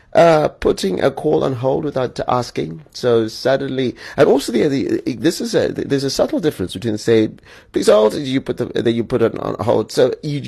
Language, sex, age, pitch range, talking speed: English, male, 30-49, 95-120 Hz, 205 wpm